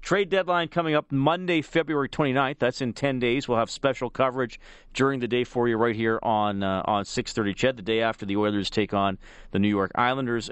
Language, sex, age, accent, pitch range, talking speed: English, male, 40-59, American, 110-140 Hz, 215 wpm